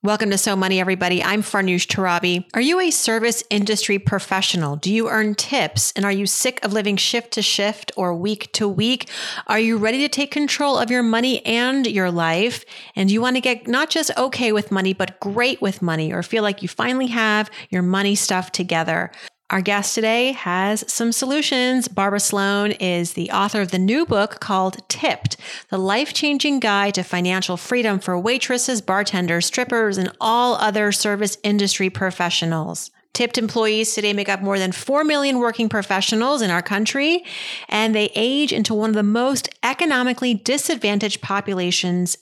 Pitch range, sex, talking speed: 185-235 Hz, female, 180 wpm